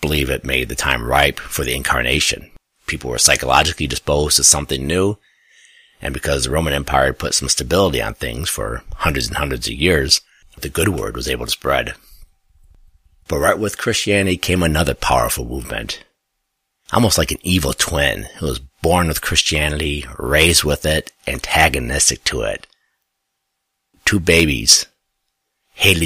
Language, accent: English, American